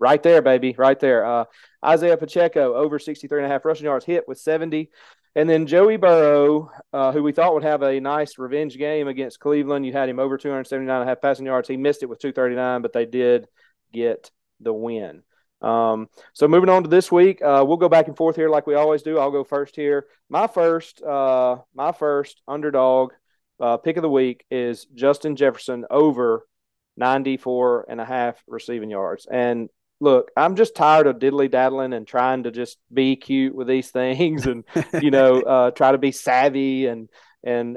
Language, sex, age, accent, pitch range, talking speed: English, male, 30-49, American, 130-155 Hz, 195 wpm